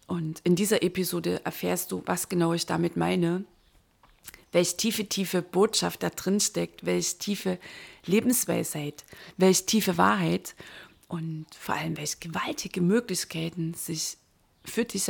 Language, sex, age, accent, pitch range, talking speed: German, female, 30-49, German, 170-200 Hz, 130 wpm